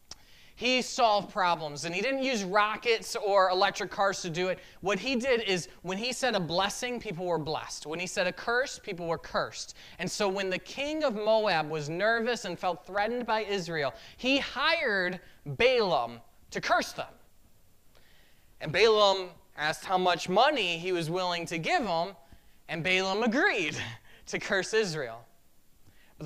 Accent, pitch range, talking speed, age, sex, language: American, 175-245 Hz, 165 wpm, 20-39, male, English